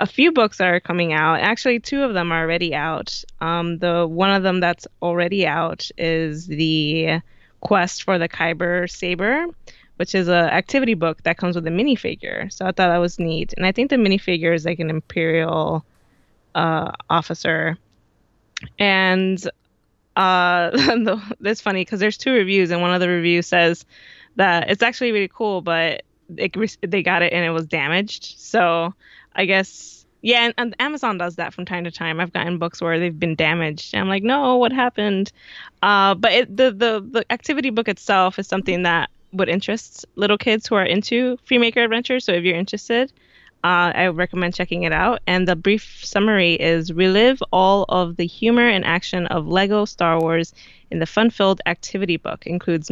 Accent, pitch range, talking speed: American, 170-210 Hz, 185 wpm